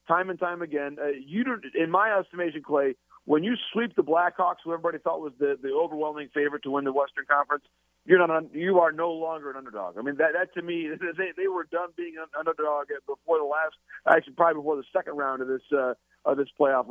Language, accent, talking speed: English, American, 235 wpm